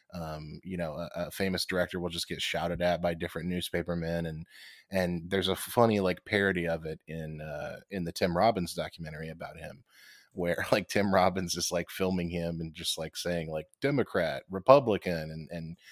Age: 20-39